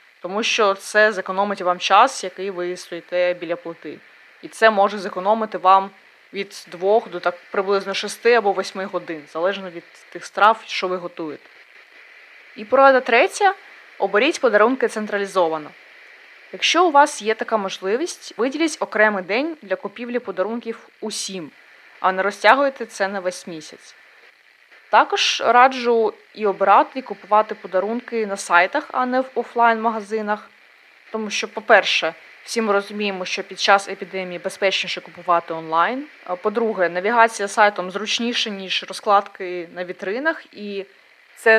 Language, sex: Ukrainian, female